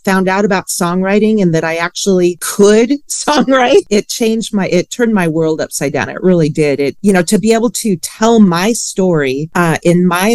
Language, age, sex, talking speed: English, 40-59, female, 205 wpm